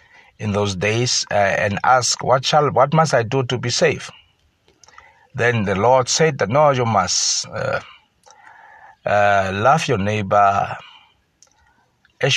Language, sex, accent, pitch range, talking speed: English, male, South African, 105-145 Hz, 140 wpm